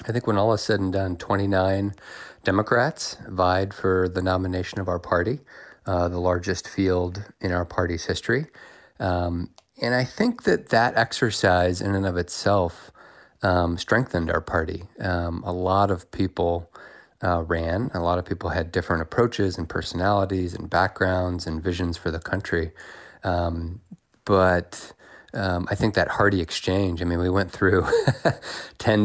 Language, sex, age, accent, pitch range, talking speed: English, male, 30-49, American, 90-100 Hz, 160 wpm